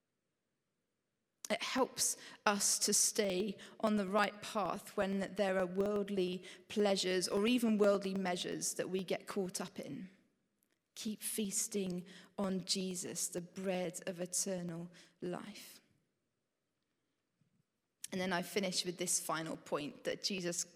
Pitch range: 180-205 Hz